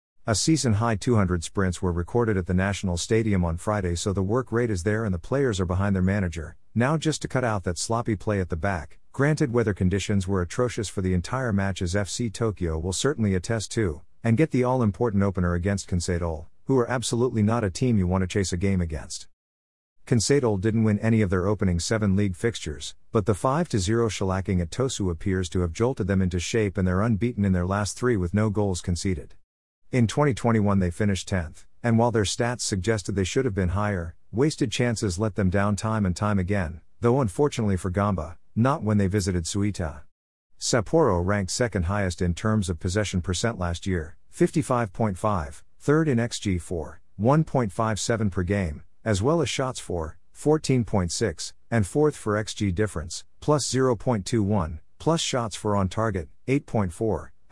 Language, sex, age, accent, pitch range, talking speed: English, male, 50-69, American, 90-115 Hz, 185 wpm